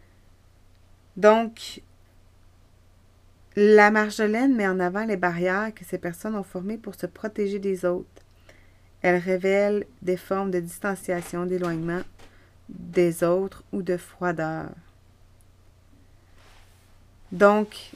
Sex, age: female, 30-49